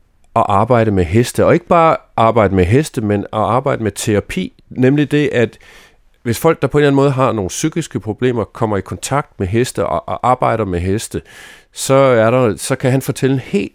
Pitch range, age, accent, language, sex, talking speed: 100-140 Hz, 30-49, native, Danish, male, 200 wpm